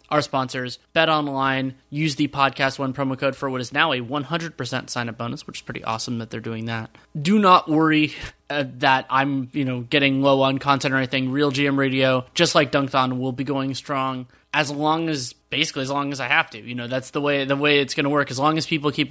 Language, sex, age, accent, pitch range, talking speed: English, male, 20-39, American, 130-150 Hz, 250 wpm